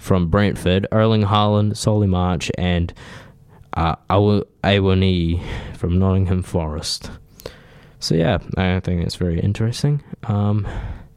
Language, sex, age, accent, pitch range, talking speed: English, male, 10-29, Australian, 90-110 Hz, 110 wpm